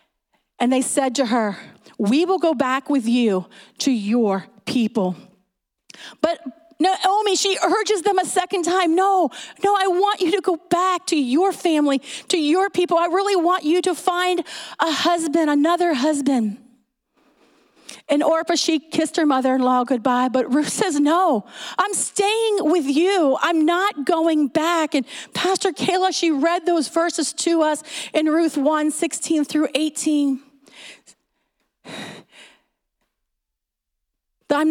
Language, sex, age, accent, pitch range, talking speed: English, female, 40-59, American, 275-355 Hz, 140 wpm